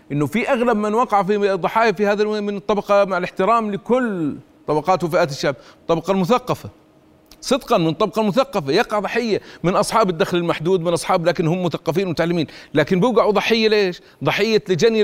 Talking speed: 165 wpm